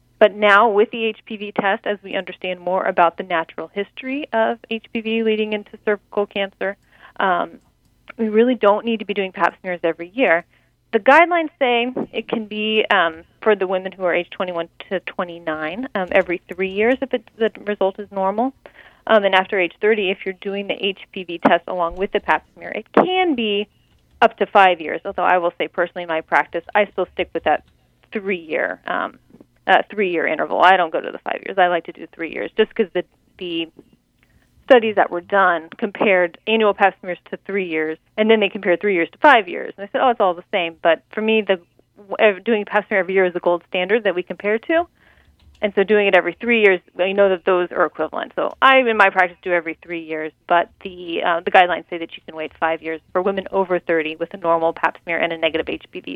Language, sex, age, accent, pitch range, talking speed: English, female, 30-49, American, 175-215 Hz, 220 wpm